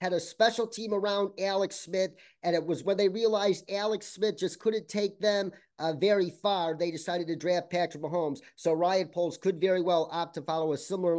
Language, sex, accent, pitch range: English, male, American, 165-215 Hz